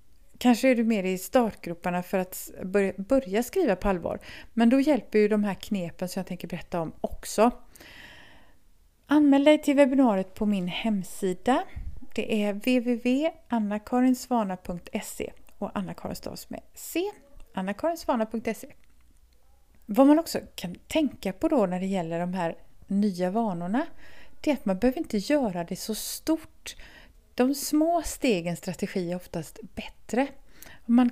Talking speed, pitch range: 140 wpm, 190-255 Hz